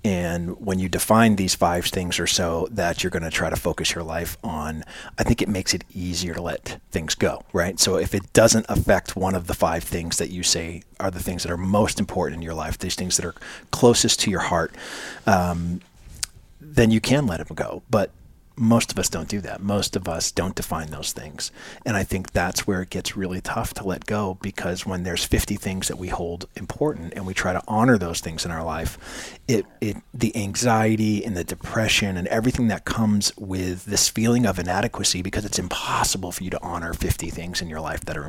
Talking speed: 225 wpm